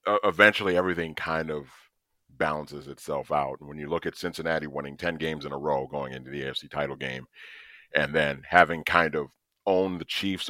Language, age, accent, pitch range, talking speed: English, 40-59, American, 75-95 Hz, 185 wpm